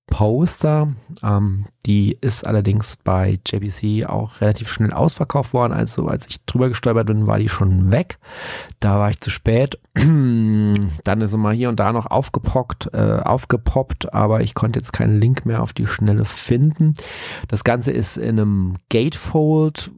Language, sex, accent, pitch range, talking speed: German, male, German, 100-125 Hz, 165 wpm